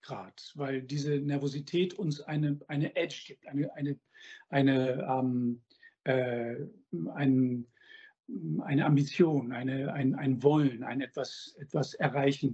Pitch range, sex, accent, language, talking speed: 140-175 Hz, male, German, German, 120 wpm